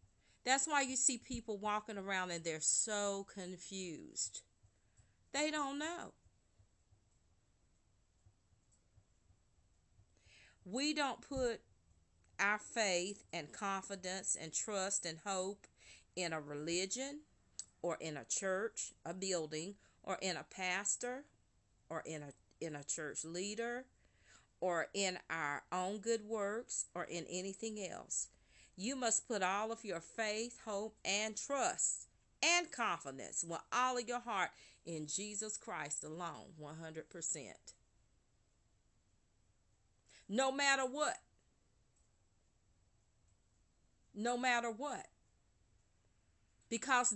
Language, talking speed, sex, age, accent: English, 105 wpm, female, 40-59, American